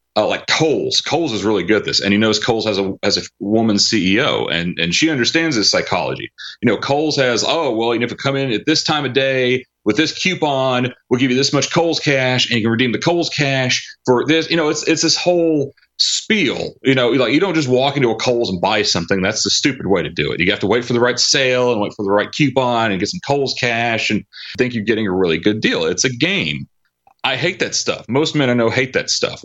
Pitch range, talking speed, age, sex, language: 105-135 Hz, 265 wpm, 30-49, male, English